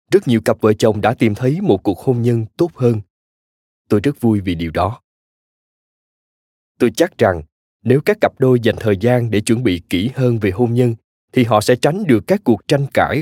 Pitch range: 100-130 Hz